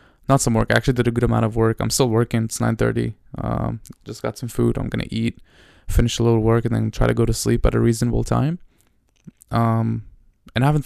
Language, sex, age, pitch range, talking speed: English, male, 20-39, 115-130 Hz, 245 wpm